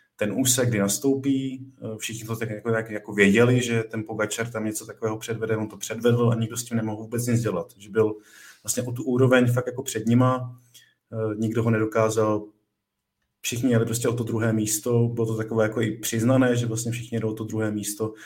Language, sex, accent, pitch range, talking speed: Czech, male, native, 105-115 Hz, 200 wpm